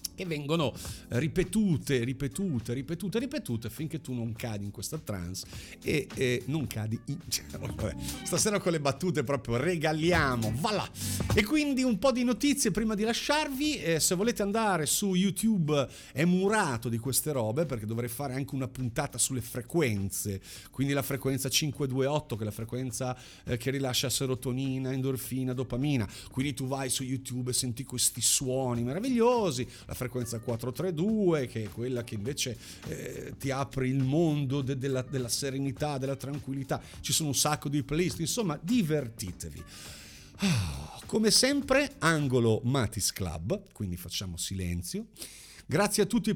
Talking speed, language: 150 wpm, Italian